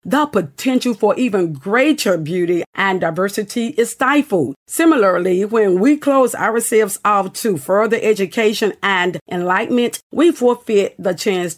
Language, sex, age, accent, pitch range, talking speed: English, female, 40-59, American, 180-230 Hz, 130 wpm